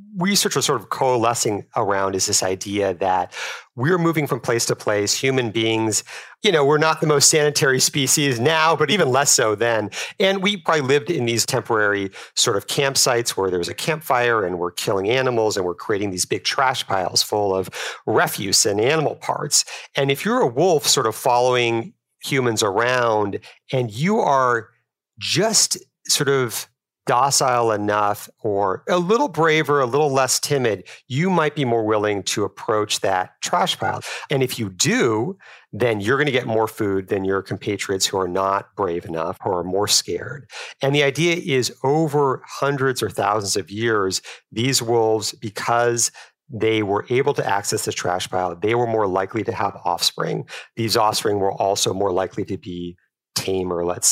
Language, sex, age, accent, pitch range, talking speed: English, male, 40-59, American, 100-140 Hz, 180 wpm